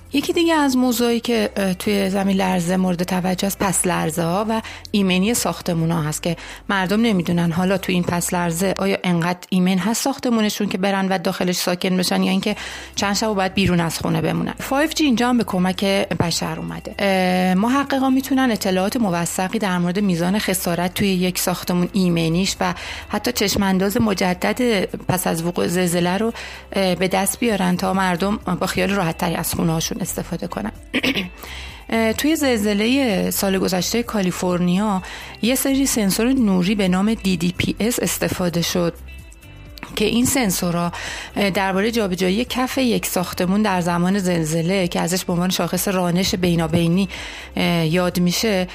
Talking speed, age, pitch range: 150 wpm, 30-49, 180-215 Hz